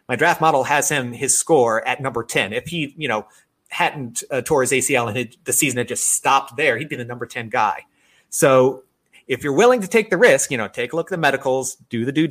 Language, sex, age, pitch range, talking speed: English, male, 30-49, 120-145 Hz, 255 wpm